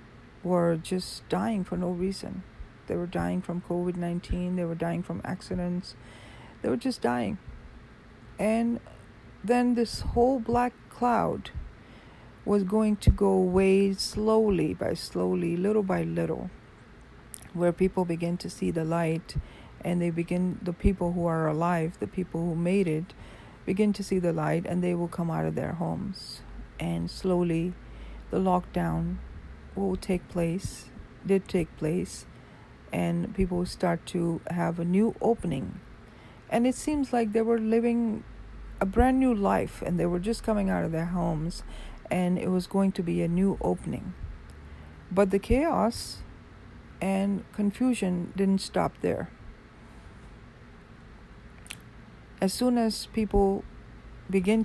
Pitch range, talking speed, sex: 165-200 Hz, 145 wpm, female